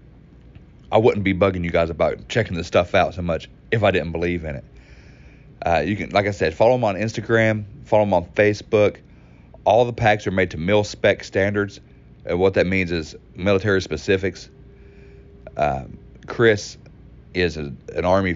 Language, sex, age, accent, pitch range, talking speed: English, male, 40-59, American, 80-100 Hz, 175 wpm